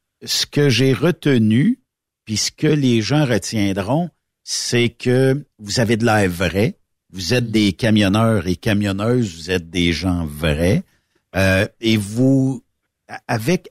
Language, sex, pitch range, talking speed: French, male, 105-145 Hz, 140 wpm